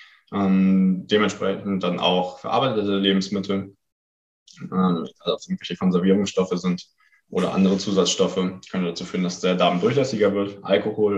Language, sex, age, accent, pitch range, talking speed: German, male, 20-39, German, 90-100 Hz, 135 wpm